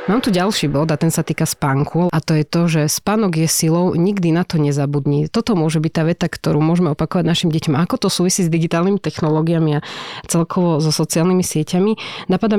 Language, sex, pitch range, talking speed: Slovak, female, 155-170 Hz, 205 wpm